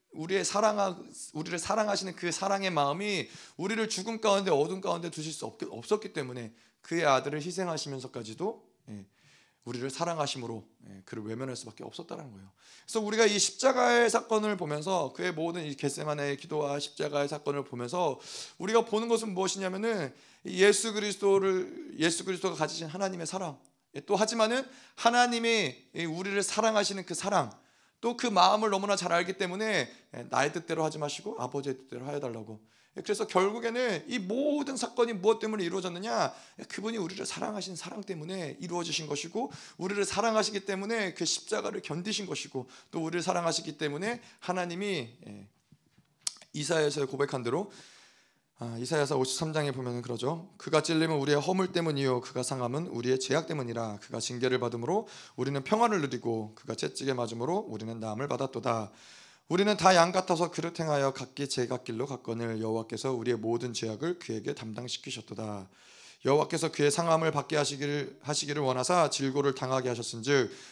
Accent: native